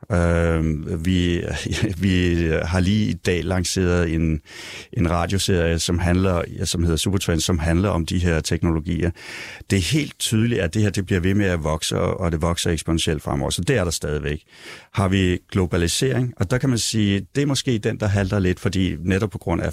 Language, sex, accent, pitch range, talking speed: Danish, male, native, 85-105 Hz, 200 wpm